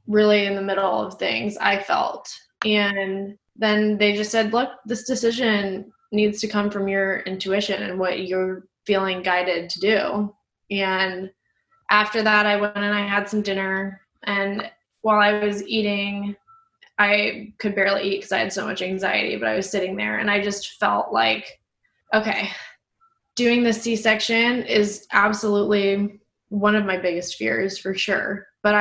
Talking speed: 160 wpm